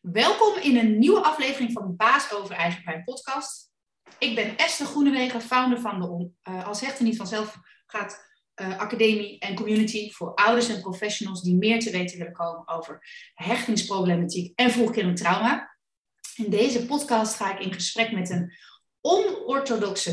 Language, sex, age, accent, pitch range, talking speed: Dutch, female, 30-49, Dutch, 180-235 Hz, 160 wpm